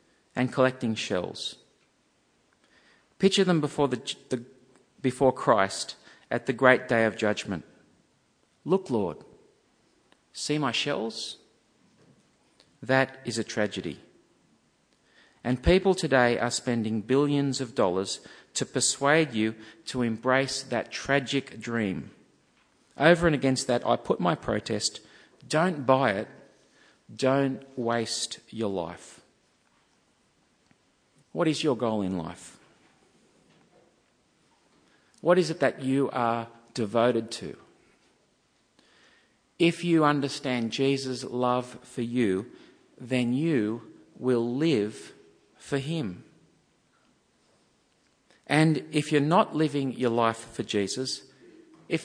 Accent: Australian